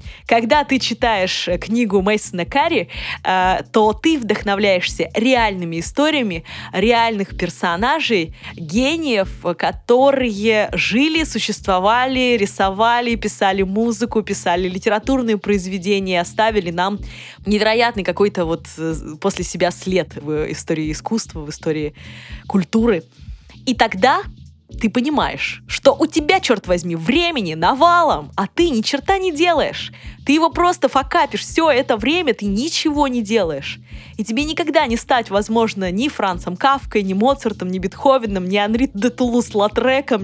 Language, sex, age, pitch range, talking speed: Russian, female, 20-39, 195-270 Hz, 125 wpm